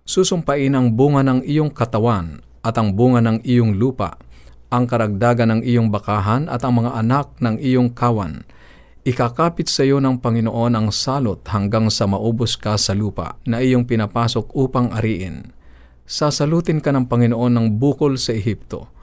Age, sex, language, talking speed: 50-69, male, Filipino, 160 wpm